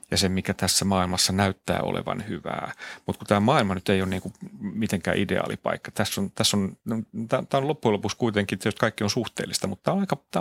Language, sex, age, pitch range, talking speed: Finnish, male, 40-59, 95-115 Hz, 200 wpm